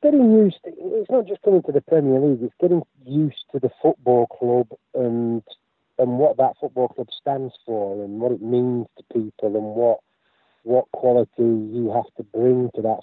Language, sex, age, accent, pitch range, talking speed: Swedish, male, 40-59, British, 110-125 Hz, 195 wpm